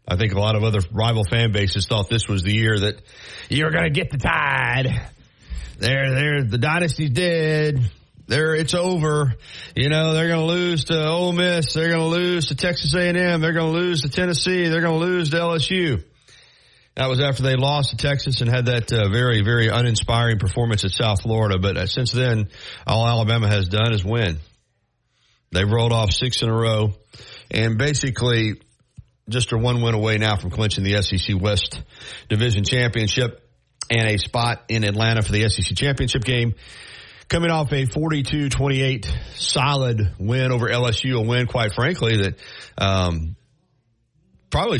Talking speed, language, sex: 175 wpm, English, male